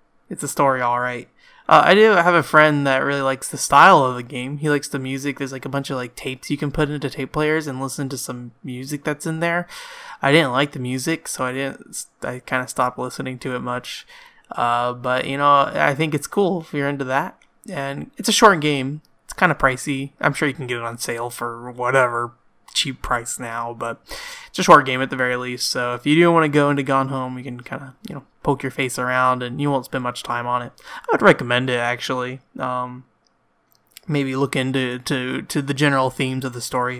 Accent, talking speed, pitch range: American, 240 wpm, 125-150 Hz